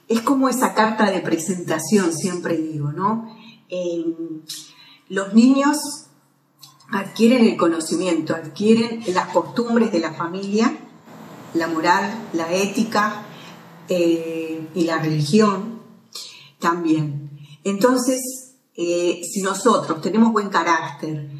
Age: 40-59